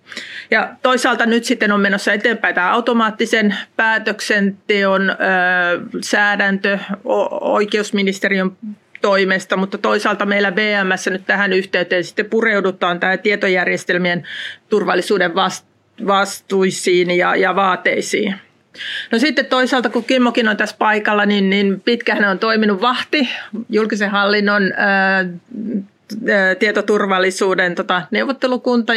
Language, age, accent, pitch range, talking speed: Finnish, 30-49, native, 190-225 Hz, 105 wpm